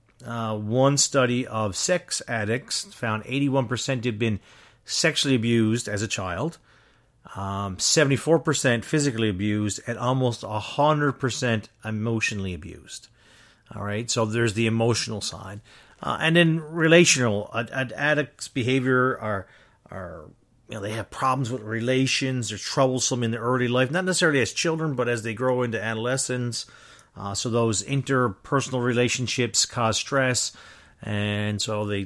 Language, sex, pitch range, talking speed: English, male, 105-130 Hz, 145 wpm